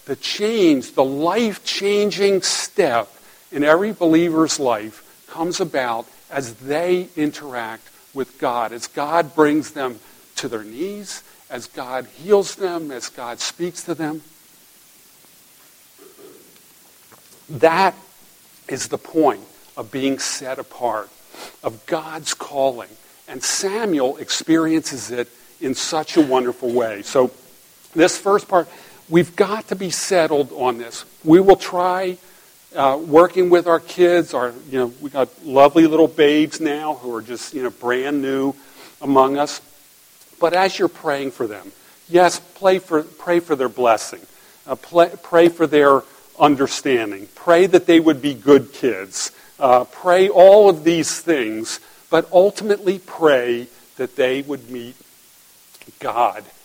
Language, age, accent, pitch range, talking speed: English, 50-69, American, 135-180 Hz, 135 wpm